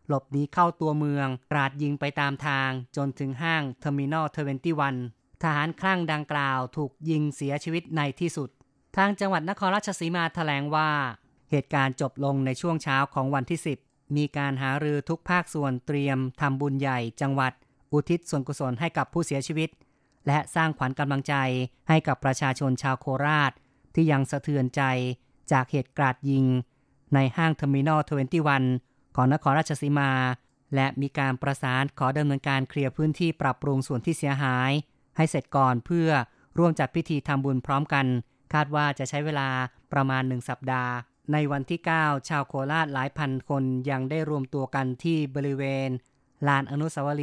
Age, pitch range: 20-39, 135-150 Hz